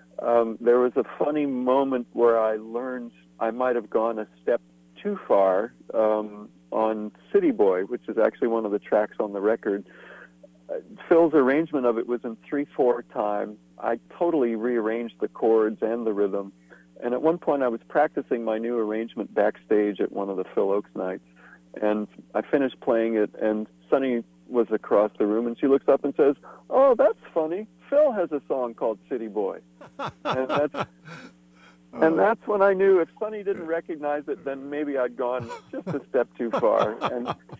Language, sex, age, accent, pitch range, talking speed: English, male, 50-69, American, 110-150 Hz, 180 wpm